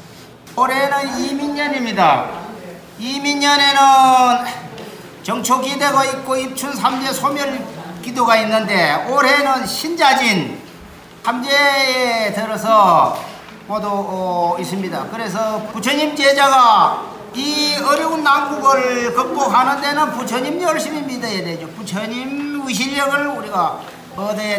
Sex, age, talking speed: male, 40-59, 80 wpm